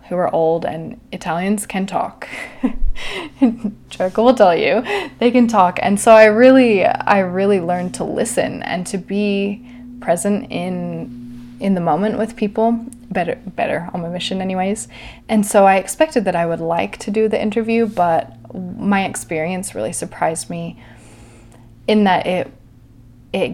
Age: 20-39